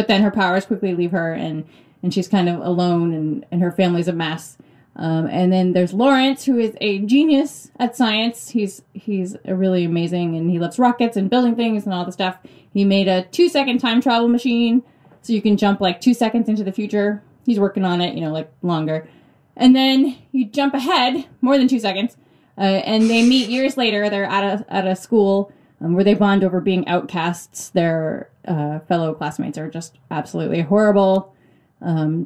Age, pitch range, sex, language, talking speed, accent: 20-39, 180-235 Hz, female, English, 200 wpm, American